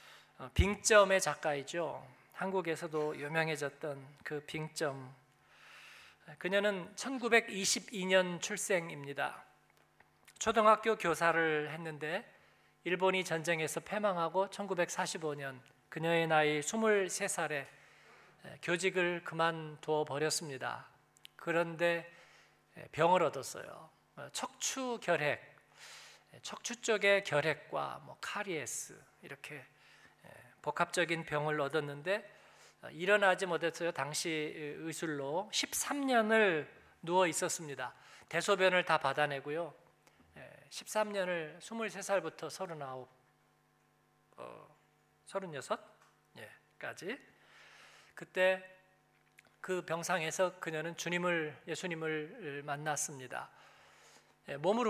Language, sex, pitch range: Korean, male, 150-190 Hz